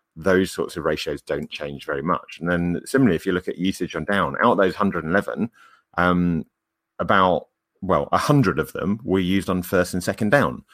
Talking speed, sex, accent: 200 wpm, male, British